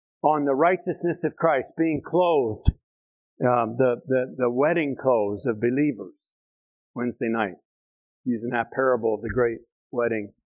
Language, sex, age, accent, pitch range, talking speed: English, male, 50-69, American, 120-185 Hz, 140 wpm